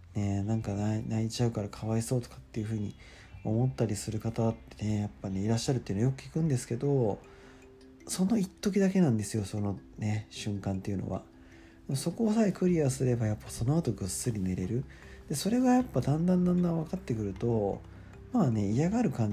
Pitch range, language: 95-120 Hz, Japanese